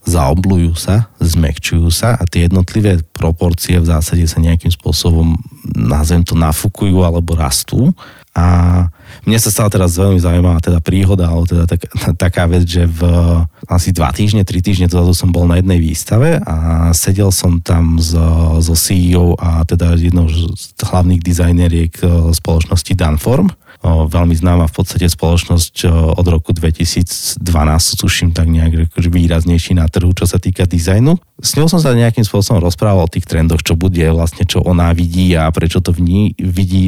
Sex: male